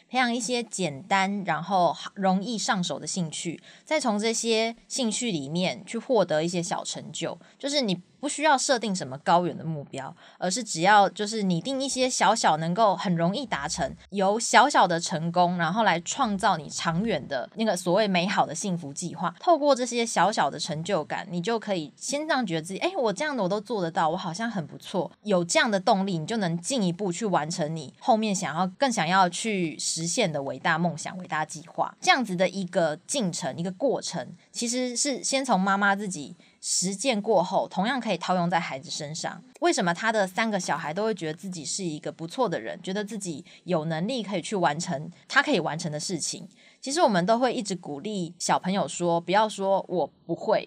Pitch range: 170-225 Hz